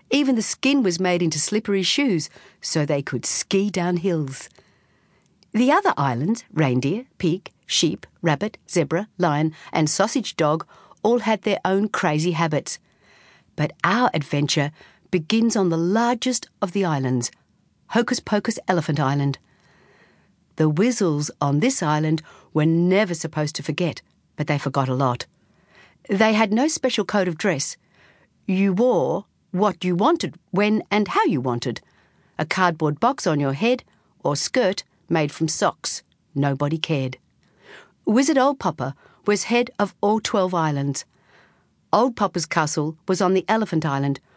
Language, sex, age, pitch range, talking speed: English, female, 50-69, 155-215 Hz, 145 wpm